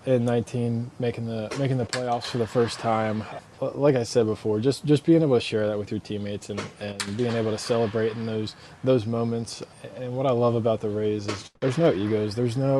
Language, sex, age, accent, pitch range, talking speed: English, male, 20-39, American, 105-120 Hz, 225 wpm